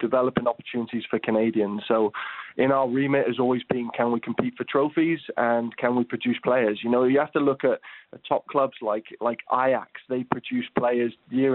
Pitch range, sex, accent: 115-130 Hz, male, British